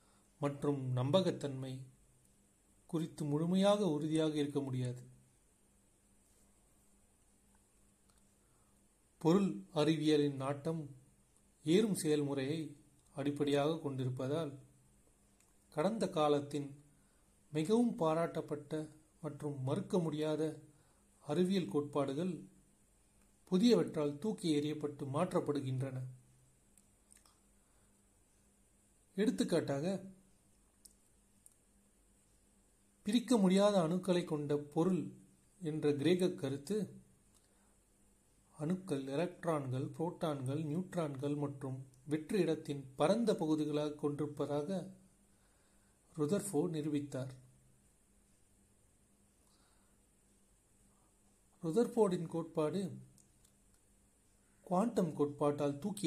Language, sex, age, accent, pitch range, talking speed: Tamil, male, 40-59, native, 100-160 Hz, 55 wpm